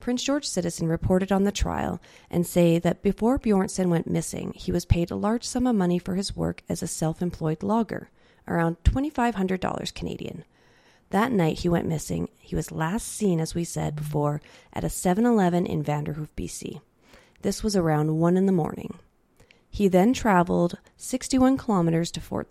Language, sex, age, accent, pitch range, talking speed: English, female, 30-49, American, 160-200 Hz, 175 wpm